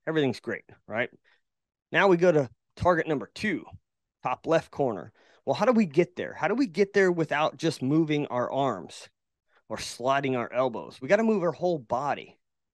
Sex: male